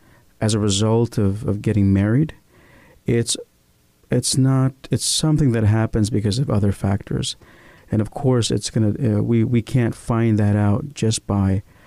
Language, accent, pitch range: English, American, 105-120 Hz